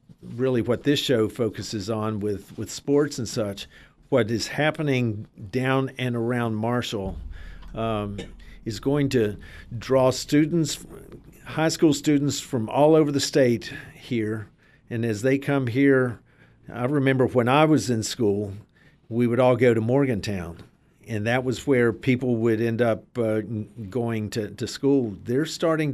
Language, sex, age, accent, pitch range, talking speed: English, male, 50-69, American, 110-140 Hz, 155 wpm